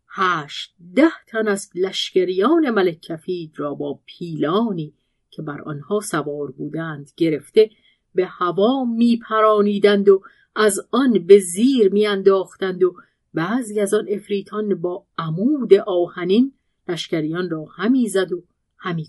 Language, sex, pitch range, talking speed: Persian, female, 165-230 Hz, 125 wpm